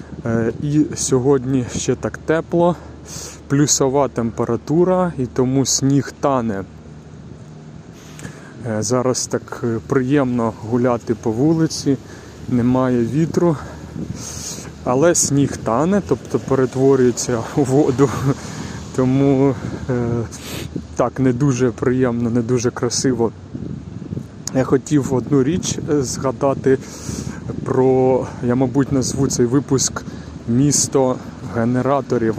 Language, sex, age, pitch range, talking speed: Ukrainian, male, 20-39, 120-140 Hz, 85 wpm